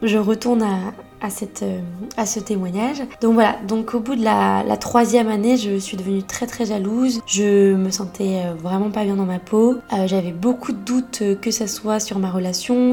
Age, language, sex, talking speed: 20-39, French, female, 205 wpm